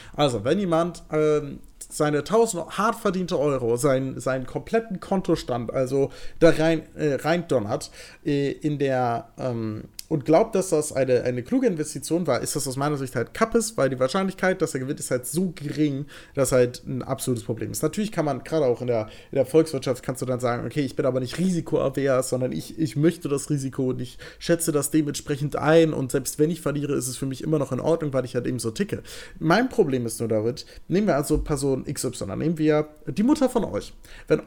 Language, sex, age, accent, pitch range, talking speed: German, male, 40-59, German, 130-170 Hz, 215 wpm